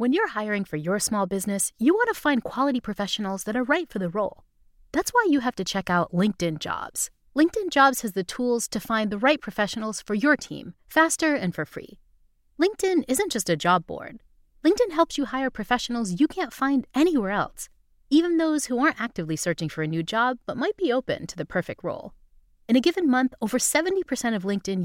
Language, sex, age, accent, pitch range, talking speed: English, female, 30-49, American, 195-295 Hz, 210 wpm